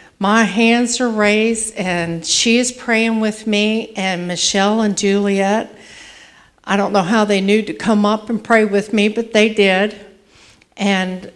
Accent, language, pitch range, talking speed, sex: American, English, 175-205 Hz, 165 wpm, female